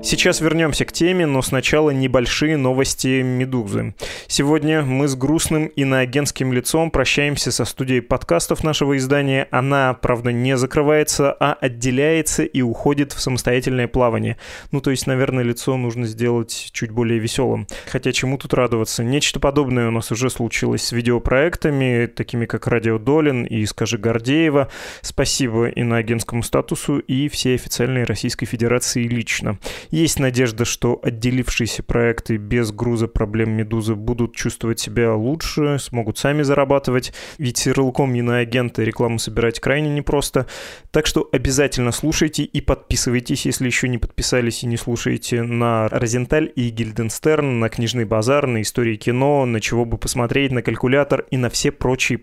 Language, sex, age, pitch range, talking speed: Russian, male, 20-39, 120-140 Hz, 145 wpm